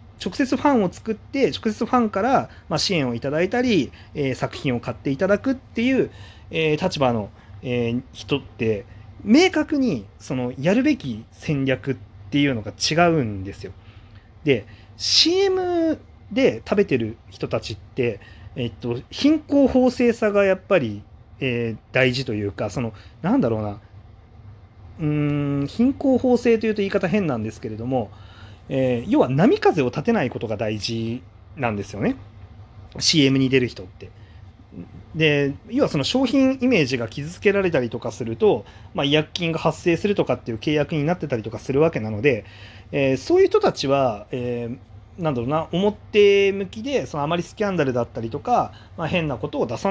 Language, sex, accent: Japanese, male, native